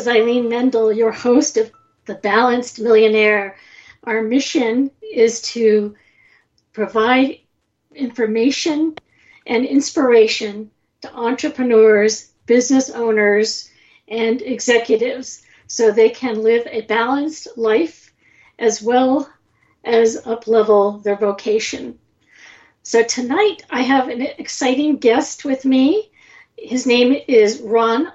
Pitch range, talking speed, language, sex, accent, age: 225-275 Hz, 100 wpm, English, female, American, 50-69